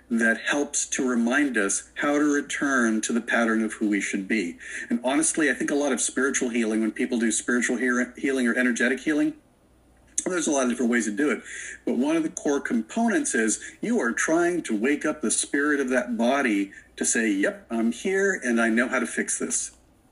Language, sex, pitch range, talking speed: English, male, 120-140 Hz, 220 wpm